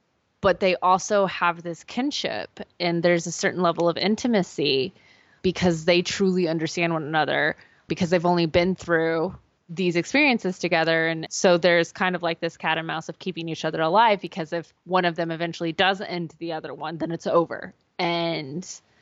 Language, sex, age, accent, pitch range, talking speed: English, female, 20-39, American, 170-215 Hz, 180 wpm